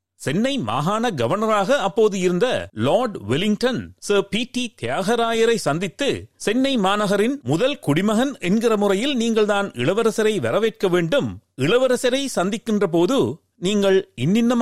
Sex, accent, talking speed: male, native, 110 wpm